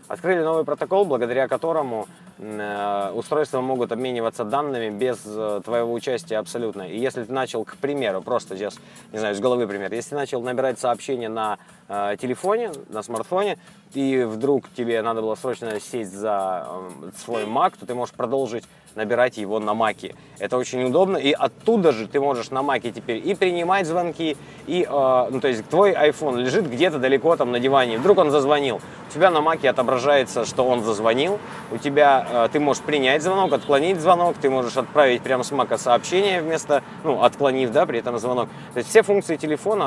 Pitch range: 115-150 Hz